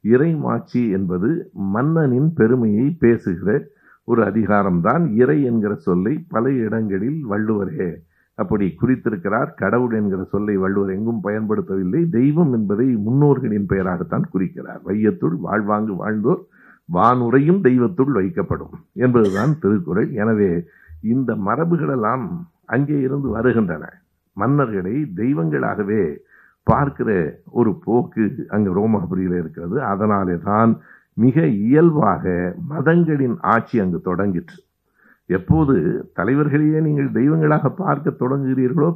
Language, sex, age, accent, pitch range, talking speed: Tamil, male, 60-79, native, 100-145 Hz, 95 wpm